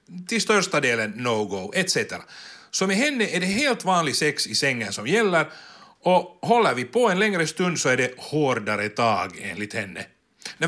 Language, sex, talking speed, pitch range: Finnish, male, 180 wpm, 120-195 Hz